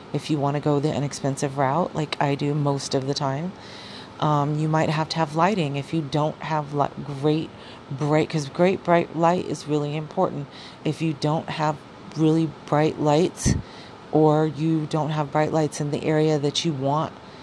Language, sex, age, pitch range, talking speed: English, female, 40-59, 145-160 Hz, 190 wpm